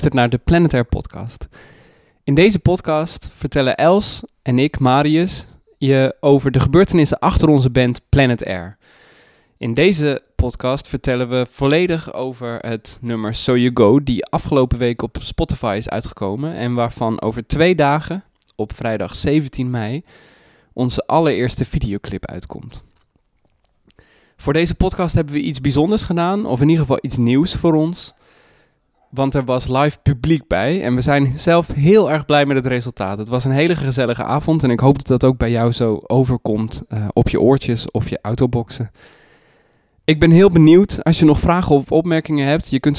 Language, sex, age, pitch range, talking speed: Dutch, male, 20-39, 120-155 Hz, 170 wpm